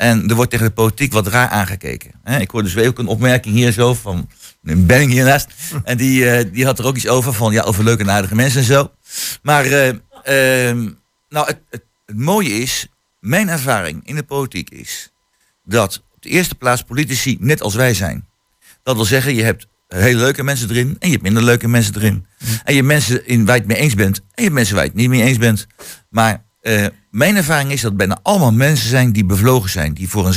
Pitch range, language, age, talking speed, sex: 105-130 Hz, Dutch, 50-69, 230 wpm, male